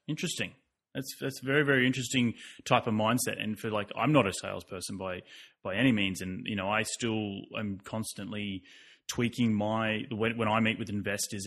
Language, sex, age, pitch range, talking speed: English, male, 20-39, 100-115 Hz, 185 wpm